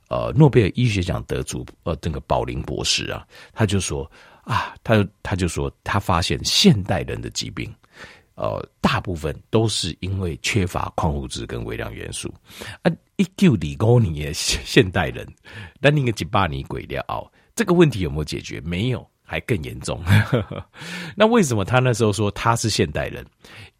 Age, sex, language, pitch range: 50-69, male, Chinese, 85-125 Hz